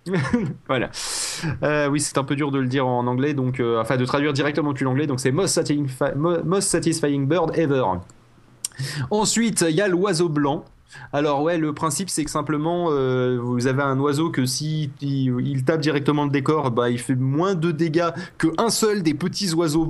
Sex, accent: male, French